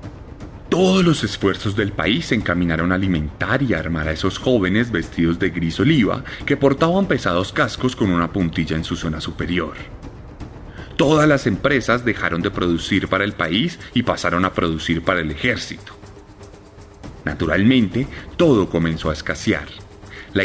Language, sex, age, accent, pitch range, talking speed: Spanish, male, 30-49, Colombian, 85-125 Hz, 150 wpm